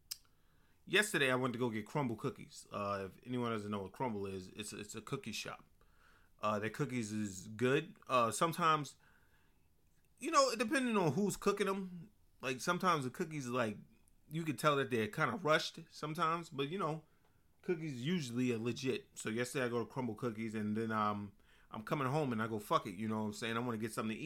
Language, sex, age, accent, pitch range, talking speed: English, male, 30-49, American, 100-160 Hz, 215 wpm